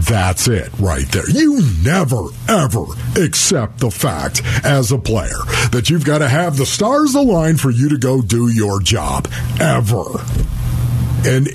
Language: English